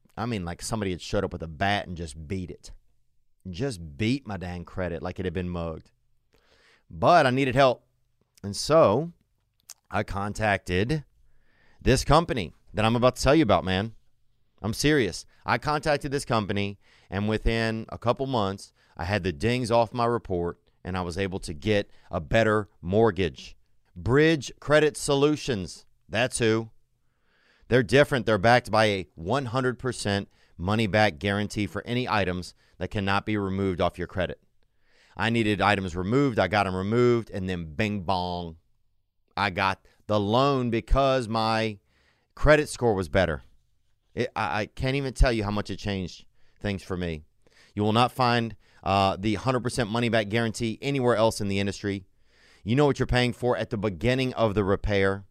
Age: 30-49